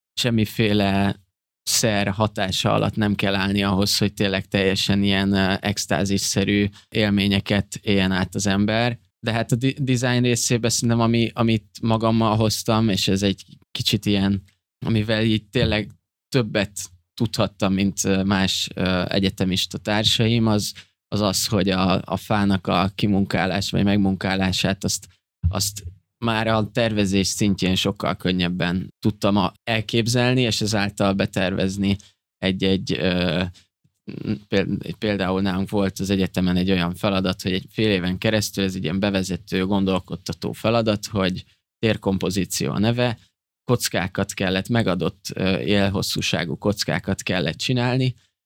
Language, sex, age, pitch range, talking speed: Hungarian, male, 20-39, 95-110 Hz, 120 wpm